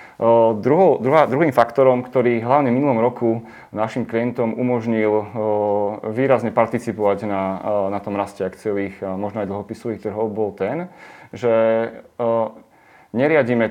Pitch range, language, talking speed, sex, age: 105-120 Hz, Slovak, 105 wpm, male, 30-49